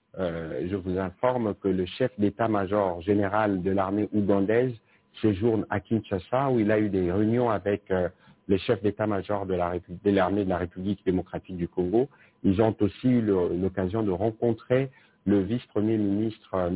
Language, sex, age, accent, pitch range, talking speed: English, male, 60-79, French, 95-110 Hz, 170 wpm